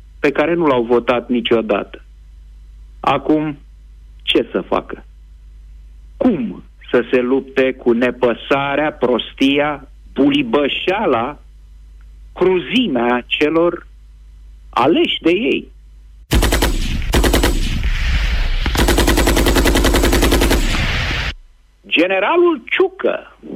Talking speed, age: 65 wpm, 50-69